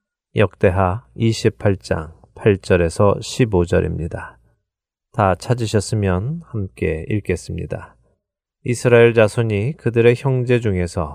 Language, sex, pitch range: Korean, male, 100-120 Hz